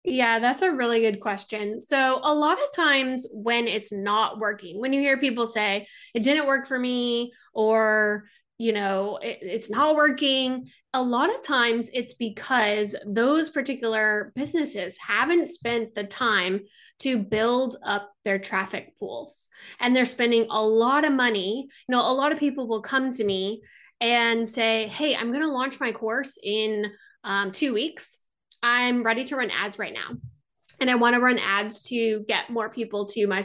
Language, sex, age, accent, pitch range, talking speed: English, female, 20-39, American, 210-270 Hz, 180 wpm